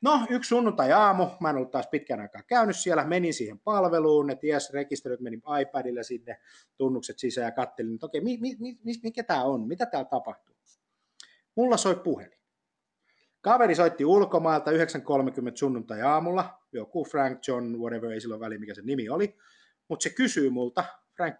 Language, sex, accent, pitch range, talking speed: Finnish, male, native, 130-210 Hz, 170 wpm